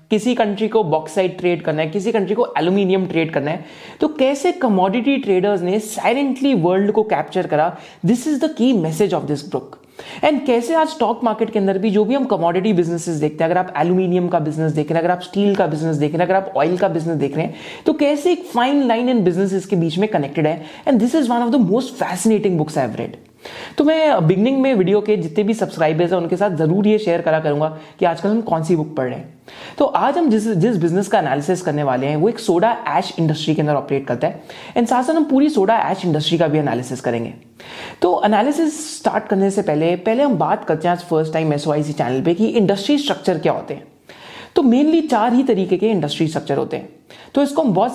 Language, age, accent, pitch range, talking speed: Hindi, 30-49, native, 160-230 Hz, 195 wpm